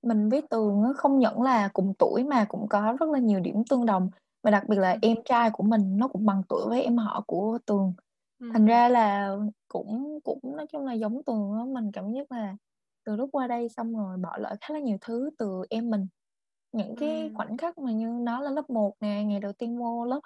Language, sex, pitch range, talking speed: Vietnamese, female, 200-260 Hz, 235 wpm